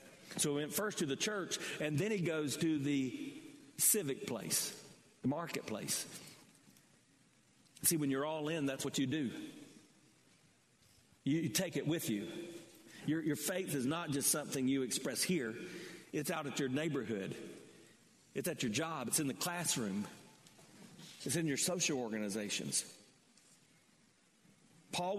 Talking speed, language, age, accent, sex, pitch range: 145 wpm, English, 50-69, American, male, 140-185 Hz